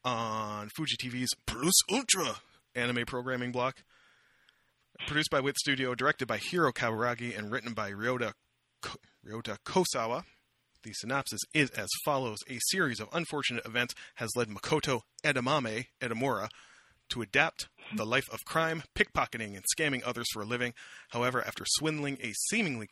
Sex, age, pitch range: male, 30-49, 110-135 Hz